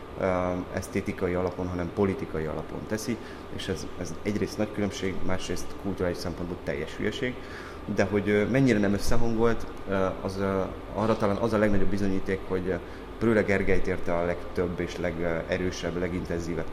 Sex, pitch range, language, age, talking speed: male, 90-105 Hz, Hungarian, 30-49, 135 wpm